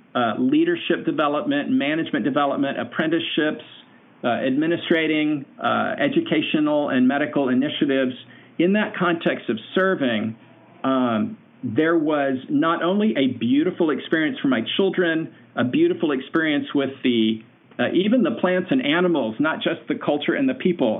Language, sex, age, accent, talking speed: English, male, 50-69, American, 135 wpm